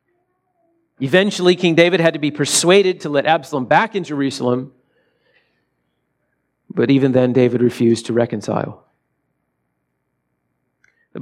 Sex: male